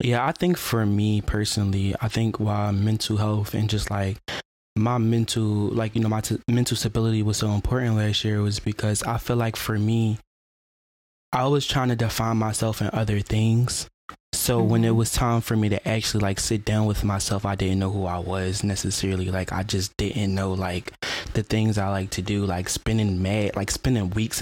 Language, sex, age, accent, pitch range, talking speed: English, male, 20-39, American, 100-120 Hz, 195 wpm